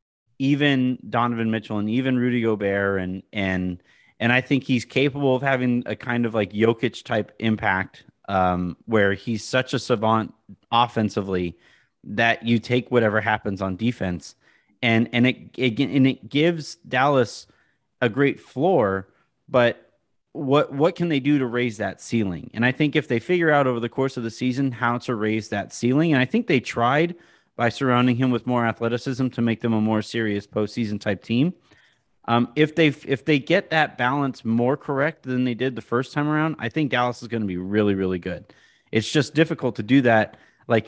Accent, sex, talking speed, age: American, male, 190 wpm, 30-49